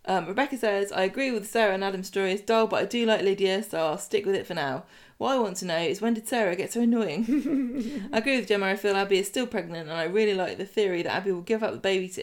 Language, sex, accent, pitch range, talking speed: English, female, British, 190-230 Hz, 295 wpm